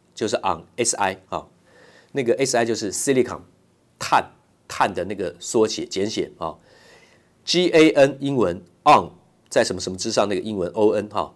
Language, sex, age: Chinese, male, 50-69